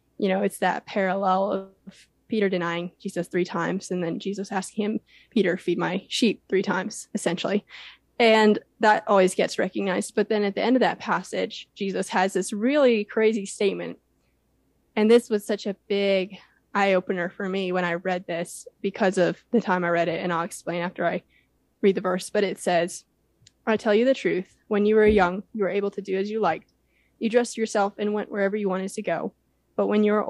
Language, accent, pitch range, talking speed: English, American, 190-215 Hz, 205 wpm